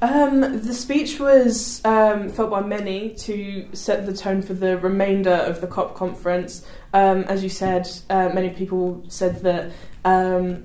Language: English